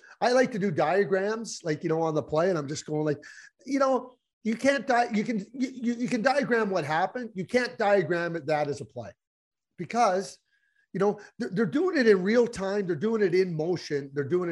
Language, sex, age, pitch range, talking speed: English, male, 40-59, 160-235 Hz, 225 wpm